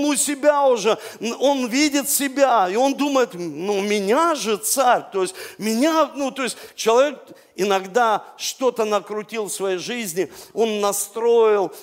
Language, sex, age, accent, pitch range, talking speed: Russian, male, 50-69, native, 195-260 Hz, 140 wpm